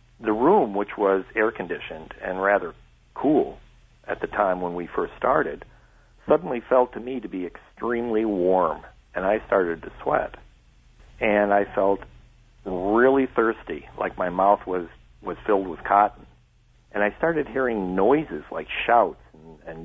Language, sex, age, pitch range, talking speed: English, male, 50-69, 85-110 Hz, 150 wpm